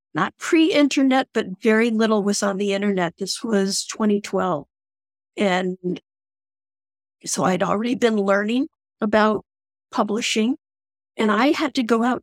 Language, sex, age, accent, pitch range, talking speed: English, female, 50-69, American, 195-255 Hz, 130 wpm